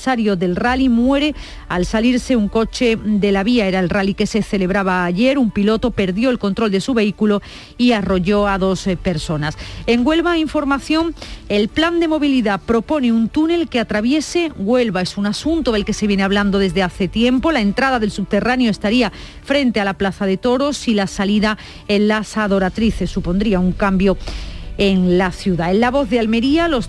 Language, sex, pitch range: Spanish, female, 200-265 Hz